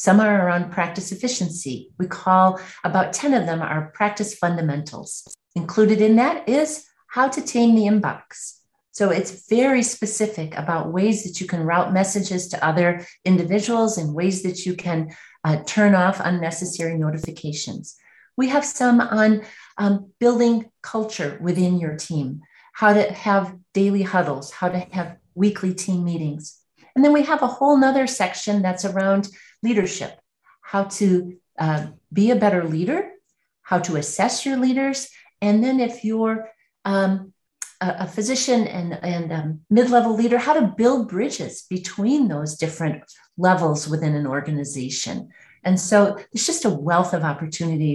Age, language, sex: 40-59, English, female